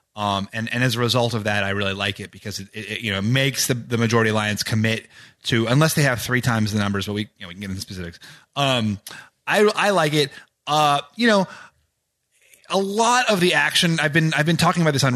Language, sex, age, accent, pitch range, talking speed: English, male, 30-49, American, 115-155 Hz, 245 wpm